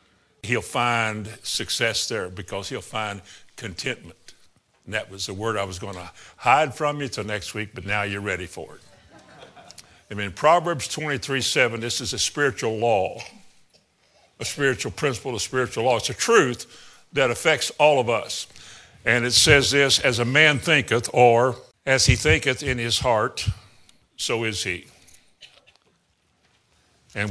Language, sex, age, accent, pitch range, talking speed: English, male, 60-79, American, 110-140 Hz, 160 wpm